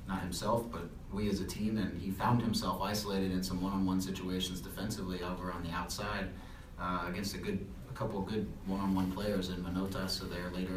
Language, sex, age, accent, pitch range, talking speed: English, male, 30-49, American, 90-95 Hz, 200 wpm